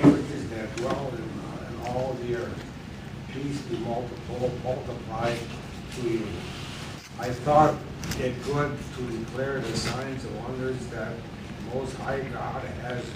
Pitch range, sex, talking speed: 115-130 Hz, male, 130 wpm